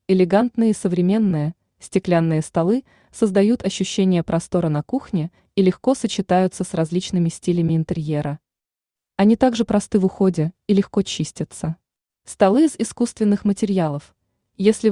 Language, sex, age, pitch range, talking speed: Russian, female, 20-39, 175-220 Hz, 120 wpm